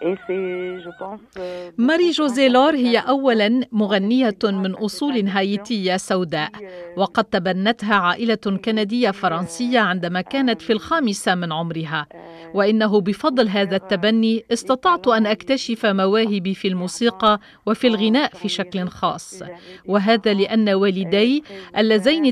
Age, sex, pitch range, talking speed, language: 40-59, female, 195-235 Hz, 105 wpm, Arabic